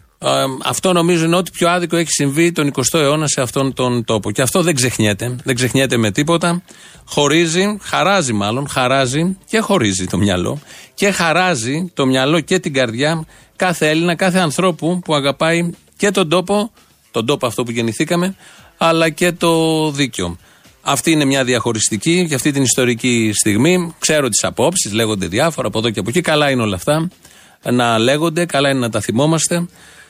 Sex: male